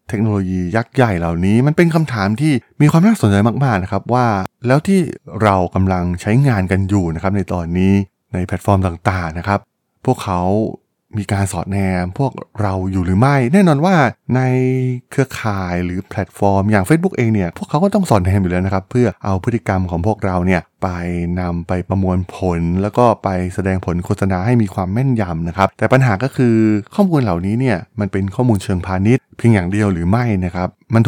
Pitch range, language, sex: 95-125 Hz, Thai, male